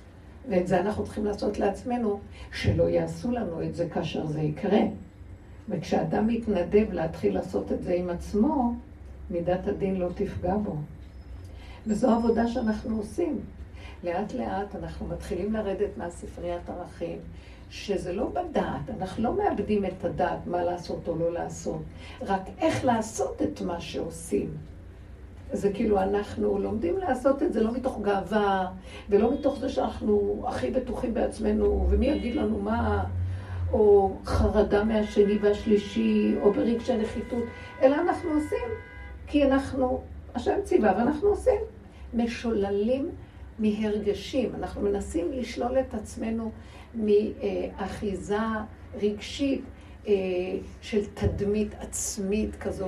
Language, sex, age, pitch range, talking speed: Hebrew, female, 60-79, 170-235 Hz, 120 wpm